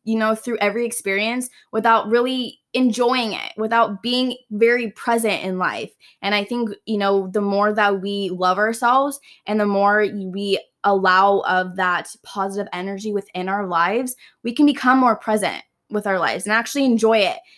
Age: 10-29